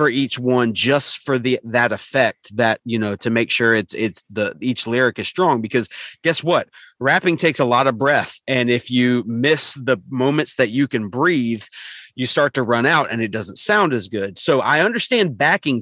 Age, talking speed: 30-49, 210 wpm